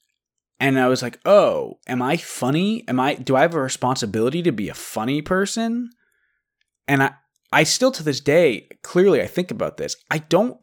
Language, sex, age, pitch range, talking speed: English, male, 20-39, 120-170 Hz, 190 wpm